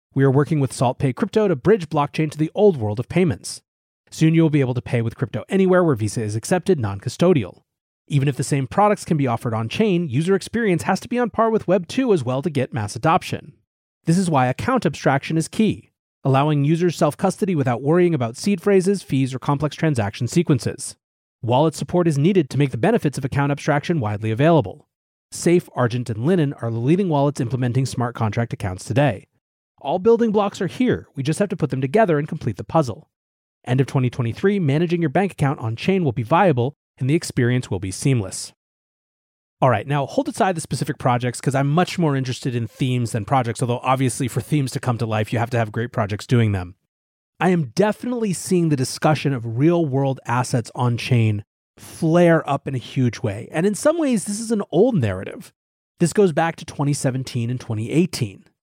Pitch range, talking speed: 125-175 Hz, 205 wpm